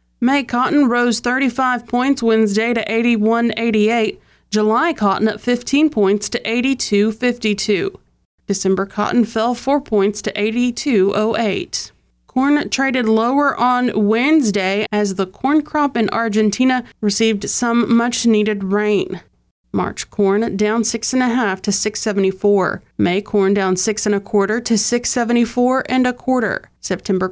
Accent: American